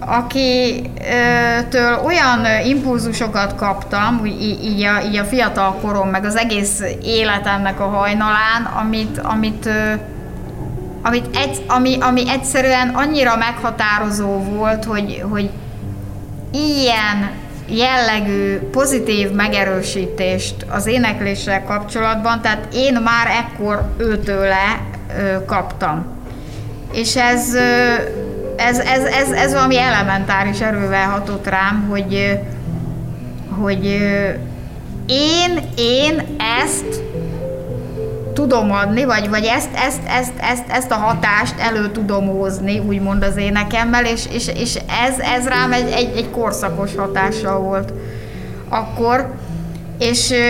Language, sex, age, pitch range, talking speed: Hungarian, female, 20-39, 195-240 Hz, 100 wpm